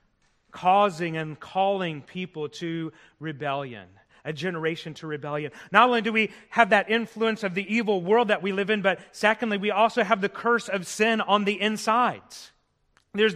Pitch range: 175-220 Hz